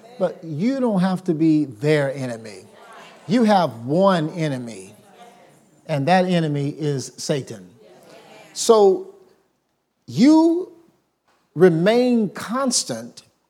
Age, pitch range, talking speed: 50-69, 155-235 Hz, 95 wpm